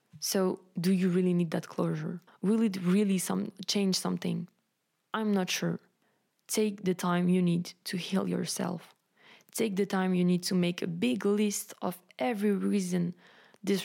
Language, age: English, 20-39